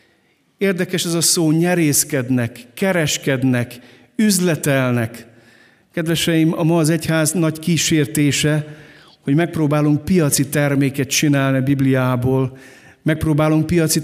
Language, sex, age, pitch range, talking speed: Hungarian, male, 50-69, 140-170 Hz, 100 wpm